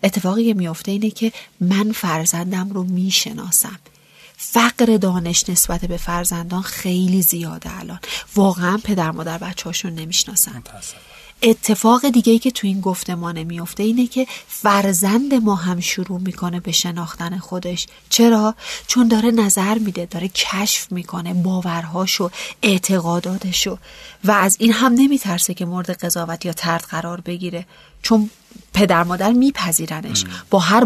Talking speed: 130 wpm